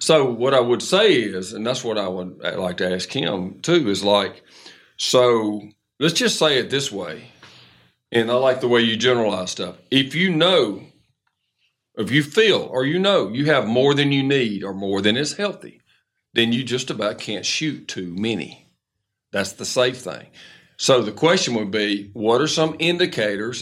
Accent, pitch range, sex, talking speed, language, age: American, 115-145 Hz, male, 190 wpm, English, 50-69